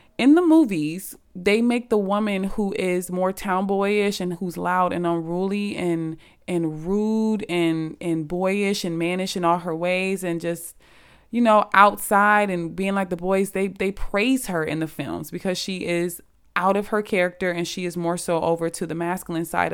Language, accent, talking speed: English, American, 190 wpm